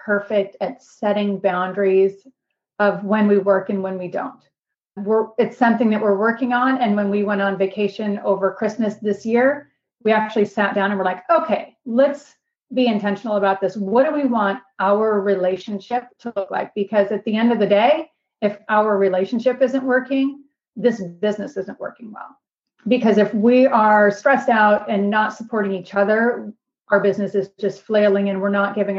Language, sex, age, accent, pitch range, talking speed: English, female, 30-49, American, 200-230 Hz, 180 wpm